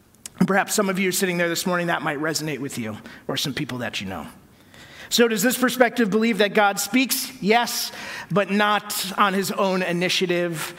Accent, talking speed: American, 190 wpm